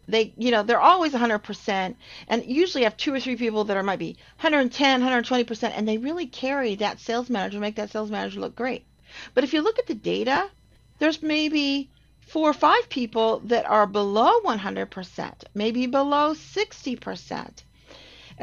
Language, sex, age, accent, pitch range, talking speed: English, female, 40-59, American, 210-275 Hz, 170 wpm